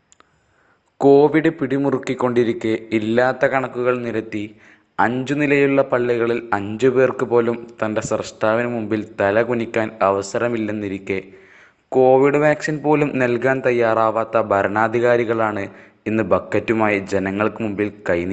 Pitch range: 105-125 Hz